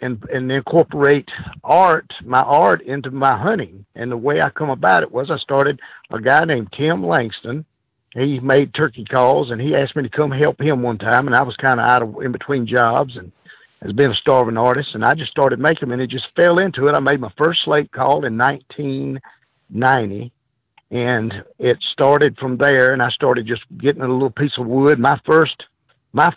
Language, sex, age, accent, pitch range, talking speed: English, male, 50-69, American, 120-145 Hz, 210 wpm